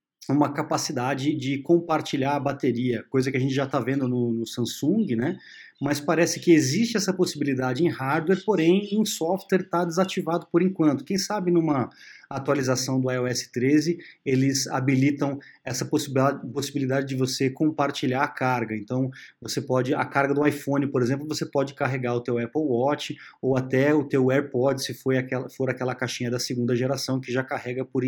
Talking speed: 175 wpm